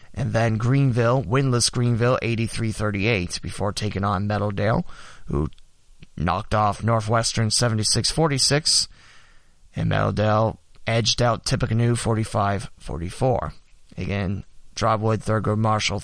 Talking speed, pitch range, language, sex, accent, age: 105 wpm, 105-130 Hz, English, male, American, 20-39